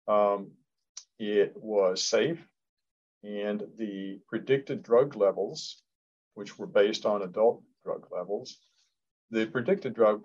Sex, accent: male, American